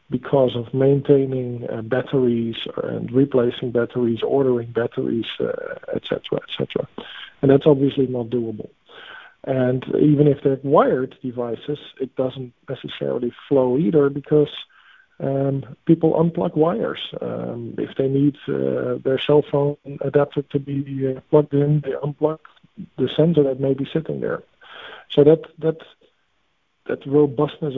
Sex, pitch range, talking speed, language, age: male, 130-150 Hz, 135 wpm, English, 50-69